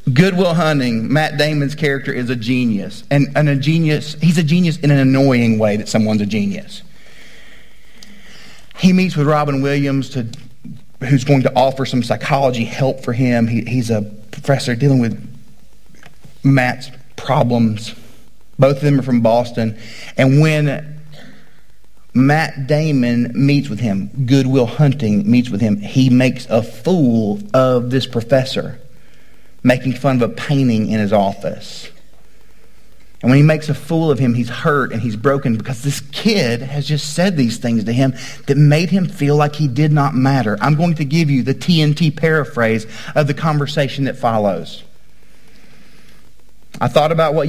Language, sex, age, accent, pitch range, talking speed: English, male, 40-59, American, 120-150 Hz, 160 wpm